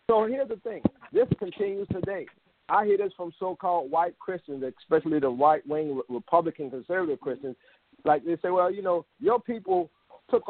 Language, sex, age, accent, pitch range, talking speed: English, male, 50-69, American, 150-190 Hz, 165 wpm